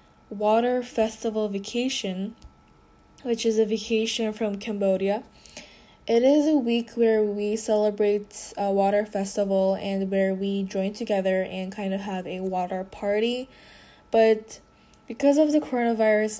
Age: 10-29